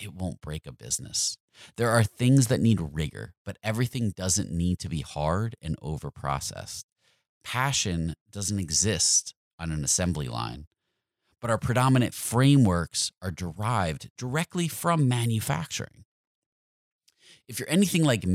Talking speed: 130 wpm